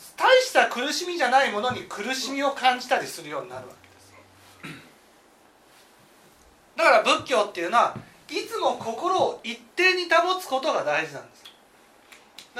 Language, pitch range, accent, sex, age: Japanese, 250-375 Hz, native, male, 40-59